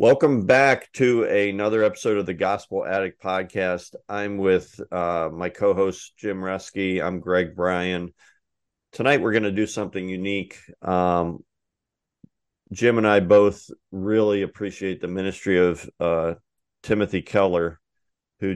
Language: English